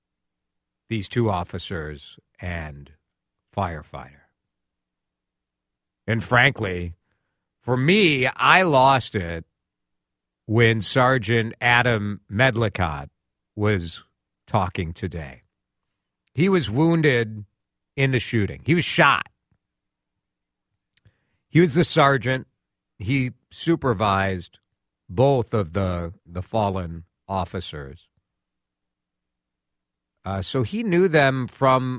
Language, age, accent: English, 50-69, American